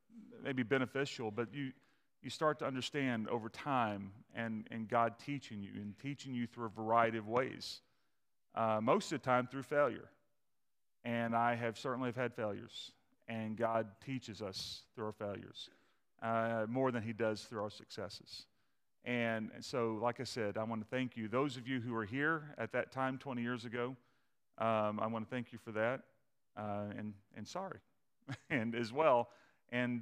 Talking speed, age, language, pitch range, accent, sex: 180 wpm, 40-59, English, 110-125 Hz, American, male